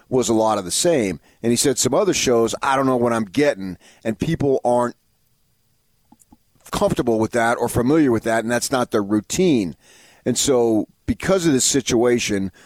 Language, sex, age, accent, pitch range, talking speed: English, male, 30-49, American, 110-130 Hz, 185 wpm